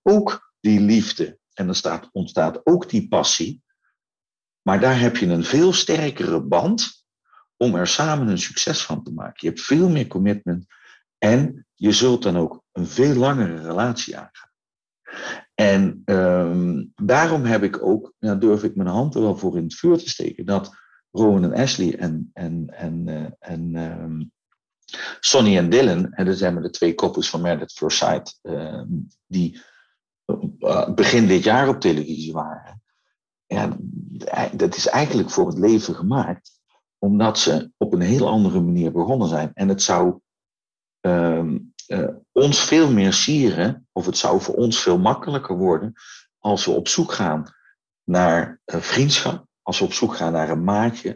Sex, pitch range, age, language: male, 85-130 Hz, 50-69, Dutch